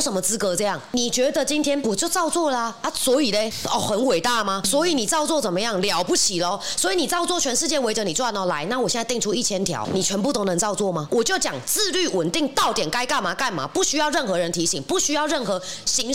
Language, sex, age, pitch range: Chinese, female, 20-39, 185-280 Hz